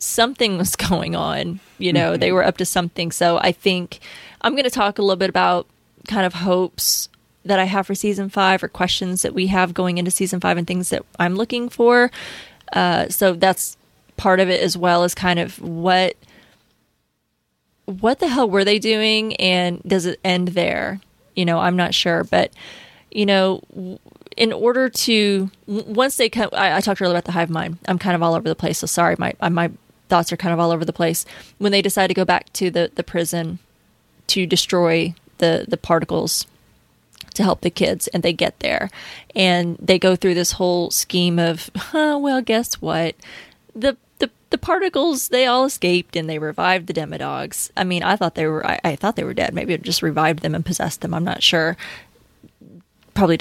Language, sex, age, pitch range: English, female, 20-39, 170-200 Hz